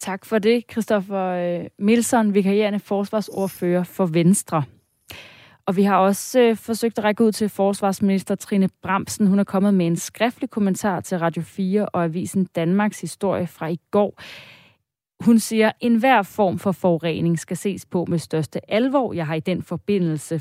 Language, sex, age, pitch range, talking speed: Danish, female, 30-49, 170-215 Hz, 165 wpm